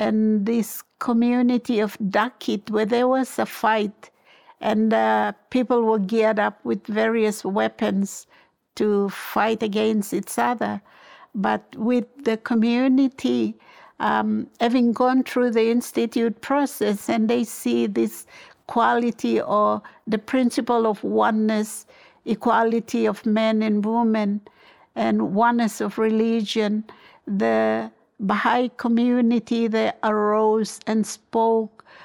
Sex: female